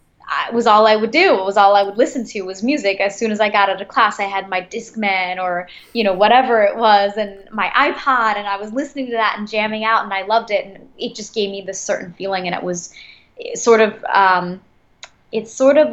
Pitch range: 185-220 Hz